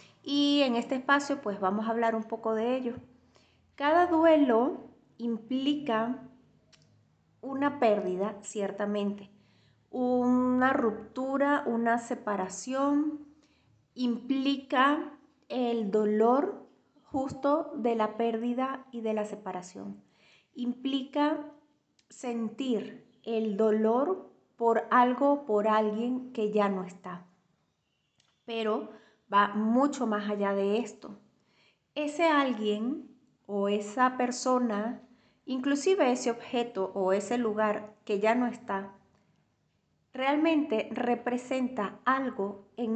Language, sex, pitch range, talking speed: Spanish, female, 210-275 Hz, 100 wpm